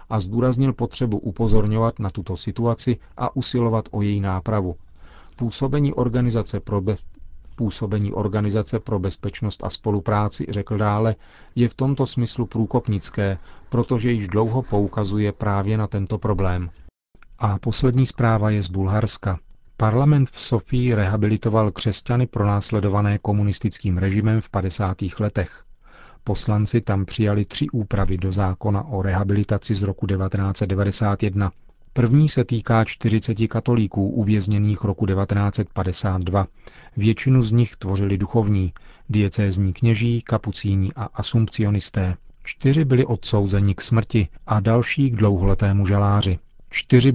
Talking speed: 115 wpm